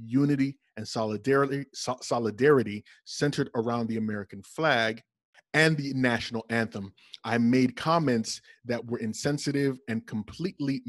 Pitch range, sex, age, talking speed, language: 110-135 Hz, male, 30-49, 115 wpm, English